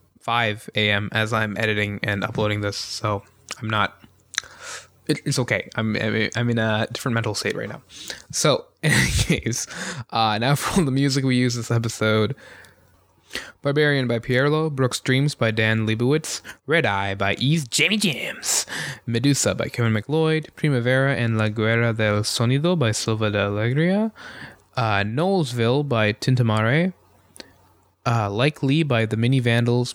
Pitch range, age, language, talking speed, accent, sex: 105-145 Hz, 20-39, English, 155 wpm, American, male